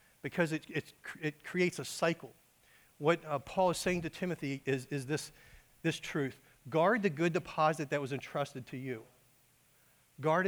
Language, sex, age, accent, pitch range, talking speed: English, male, 50-69, American, 135-165 Hz, 160 wpm